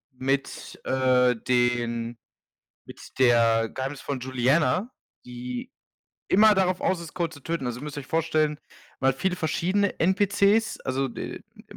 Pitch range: 130-170 Hz